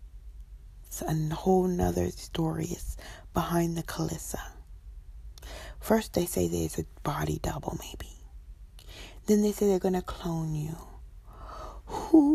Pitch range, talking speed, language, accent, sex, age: 160-255 Hz, 125 wpm, English, American, female, 40-59